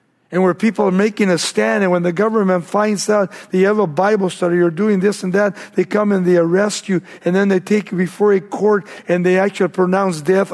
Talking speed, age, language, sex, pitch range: 245 wpm, 50-69, English, male, 160-205 Hz